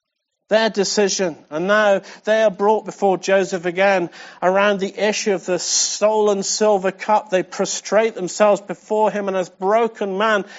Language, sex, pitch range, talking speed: English, male, 190-230 Hz, 155 wpm